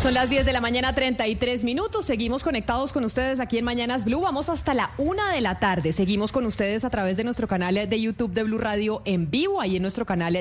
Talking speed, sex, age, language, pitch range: 240 wpm, female, 30-49, Spanish, 195-245 Hz